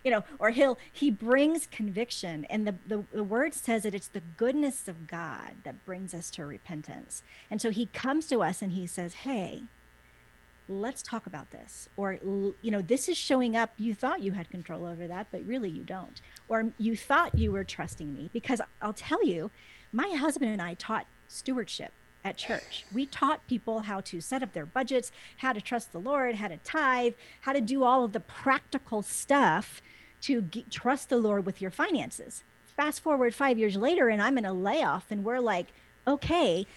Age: 40-59